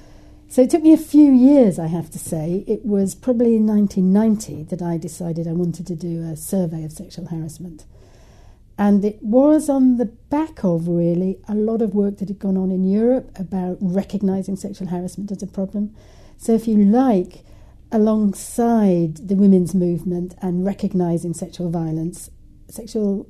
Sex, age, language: female, 60-79, English